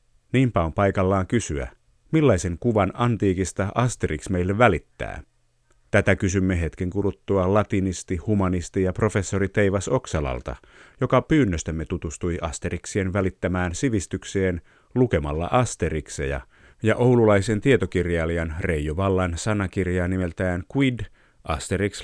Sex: male